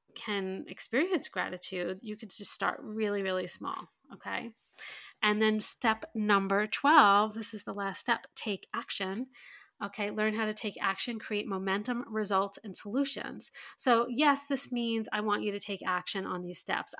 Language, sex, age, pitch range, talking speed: English, female, 30-49, 195-225 Hz, 165 wpm